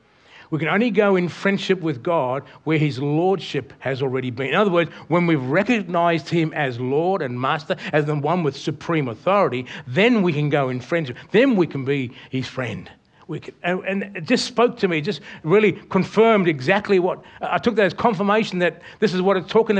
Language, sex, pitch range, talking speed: English, male, 140-185 Hz, 205 wpm